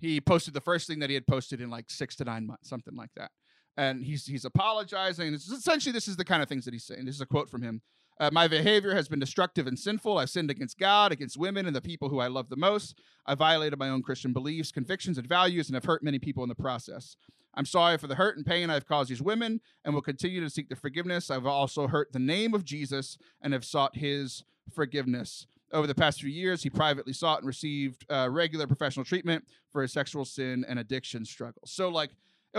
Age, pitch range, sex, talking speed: 30-49, 135-170 Hz, male, 245 wpm